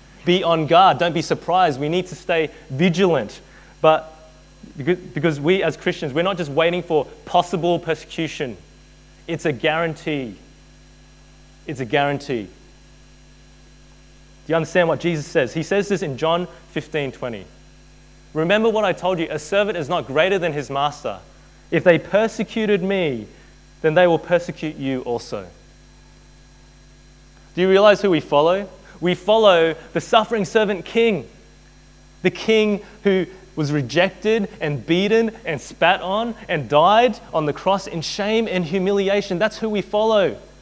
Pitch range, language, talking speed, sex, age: 155-200 Hz, English, 145 wpm, male, 20-39